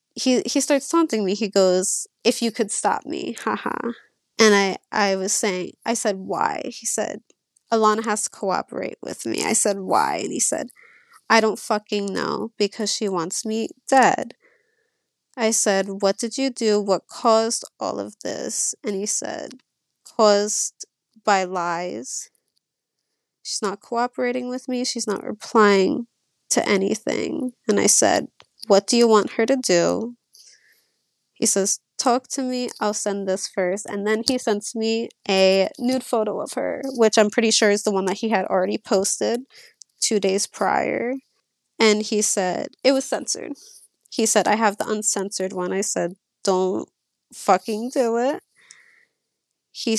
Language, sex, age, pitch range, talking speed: English, female, 20-39, 200-245 Hz, 165 wpm